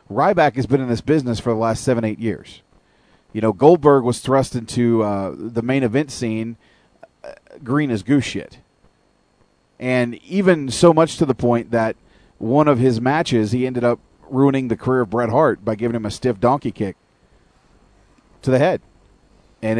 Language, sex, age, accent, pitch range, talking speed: English, male, 40-59, American, 115-145 Hz, 180 wpm